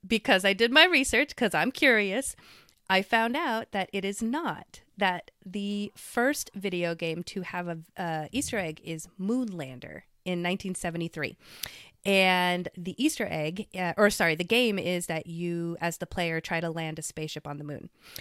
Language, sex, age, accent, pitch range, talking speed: English, female, 30-49, American, 170-220 Hz, 175 wpm